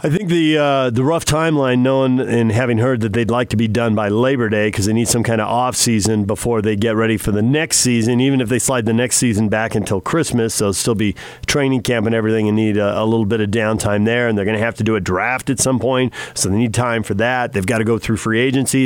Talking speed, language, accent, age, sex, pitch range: 275 wpm, English, American, 40-59, male, 110-130 Hz